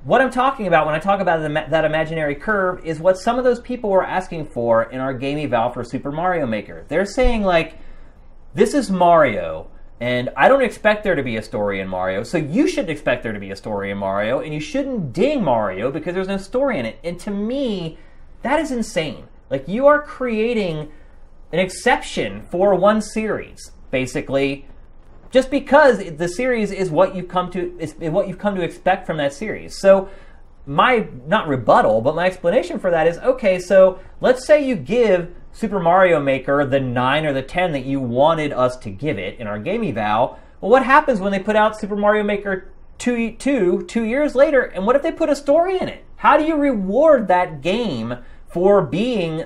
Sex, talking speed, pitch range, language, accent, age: male, 205 wpm, 145-225 Hz, English, American, 30-49